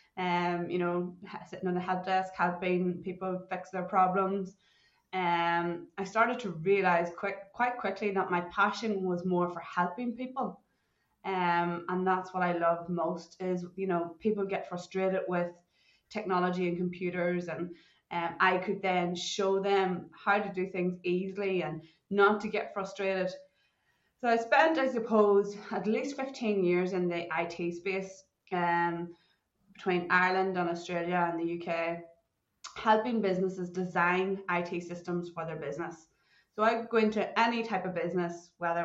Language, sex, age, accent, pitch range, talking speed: English, female, 20-39, Irish, 175-195 Hz, 155 wpm